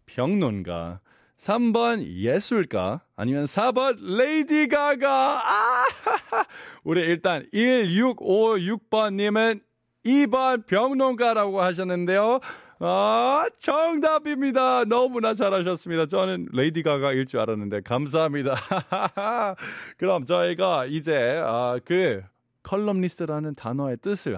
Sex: male